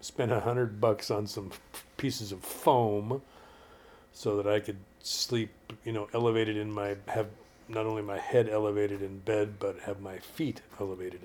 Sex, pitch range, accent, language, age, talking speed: male, 100-110 Hz, American, English, 50-69, 170 wpm